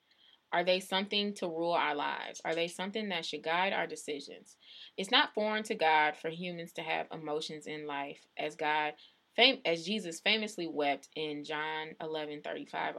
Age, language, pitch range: 20-39, English, 150-175 Hz